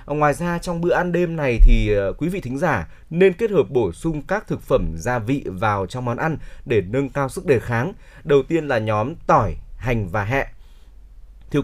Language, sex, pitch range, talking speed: Vietnamese, male, 110-150 Hz, 215 wpm